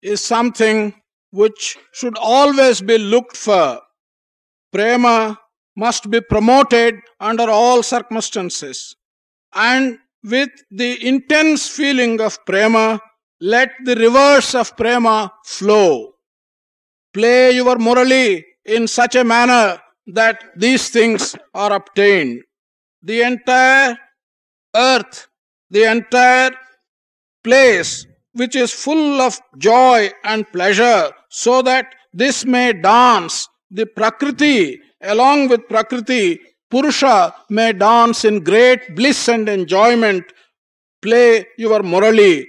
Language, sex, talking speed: English, male, 105 wpm